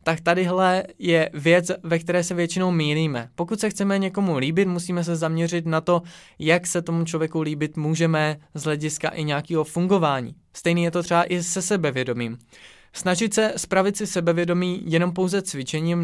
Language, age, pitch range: Czech, 20-39, 155-180 Hz